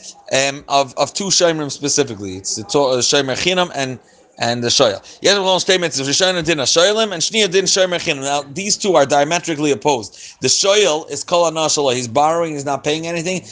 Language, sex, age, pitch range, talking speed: English, male, 30-49, 150-185 Hz, 140 wpm